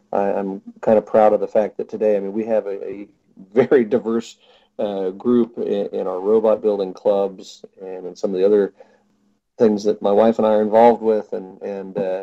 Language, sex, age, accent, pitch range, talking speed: English, male, 40-59, American, 105-130 Hz, 205 wpm